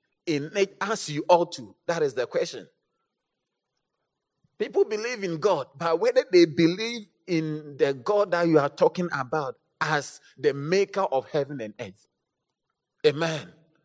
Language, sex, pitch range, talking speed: English, male, 155-225 Hz, 145 wpm